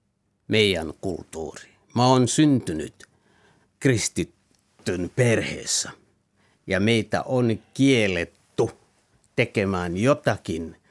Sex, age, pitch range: male, 60-79, 100-140 Hz